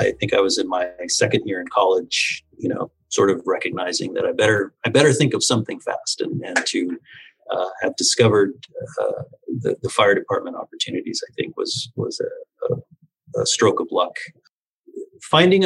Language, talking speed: English, 175 wpm